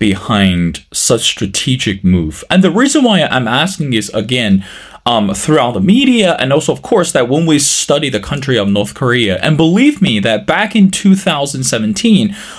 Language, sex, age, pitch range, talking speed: English, male, 20-39, 125-195 Hz, 170 wpm